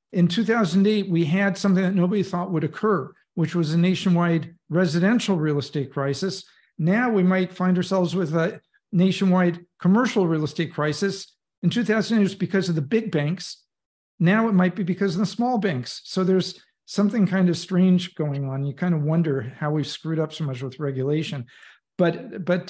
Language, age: English, 50-69